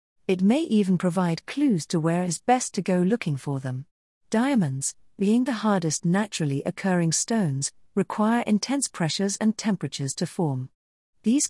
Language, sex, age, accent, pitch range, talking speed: English, female, 40-59, British, 155-215 Hz, 150 wpm